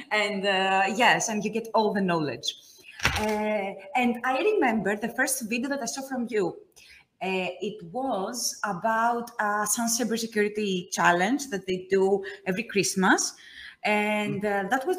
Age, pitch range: 20-39, 185-230 Hz